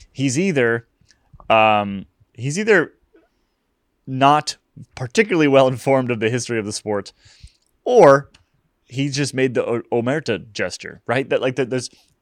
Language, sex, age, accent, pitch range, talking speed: English, male, 20-39, American, 100-125 Hz, 135 wpm